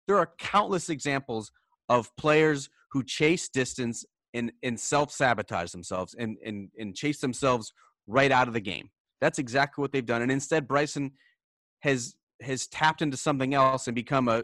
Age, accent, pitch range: 30-49, American, 115-145 Hz